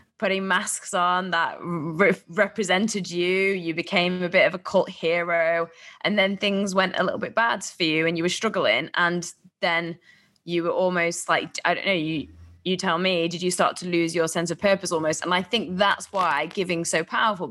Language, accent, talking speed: English, British, 205 wpm